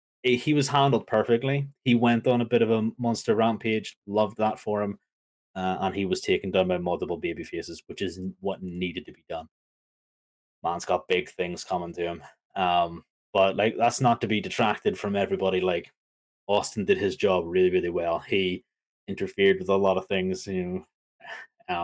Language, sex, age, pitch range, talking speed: English, male, 20-39, 90-110 Hz, 185 wpm